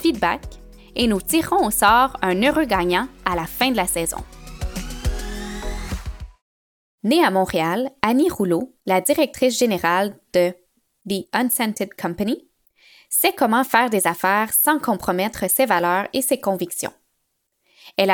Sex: female